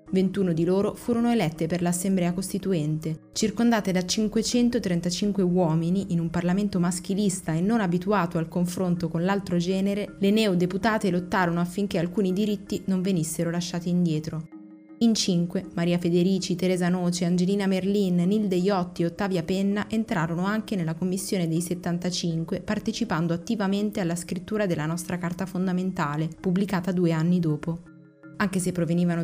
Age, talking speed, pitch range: 20-39, 140 wpm, 170-195 Hz